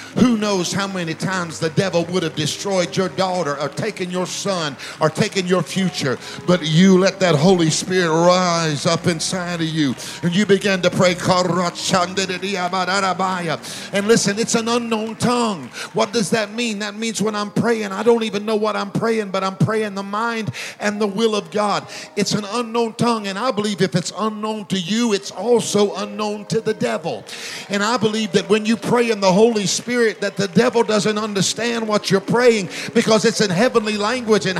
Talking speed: 195 wpm